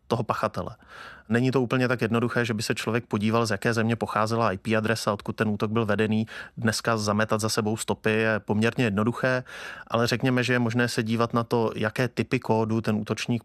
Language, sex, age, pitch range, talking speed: Czech, male, 30-49, 110-120 Hz, 200 wpm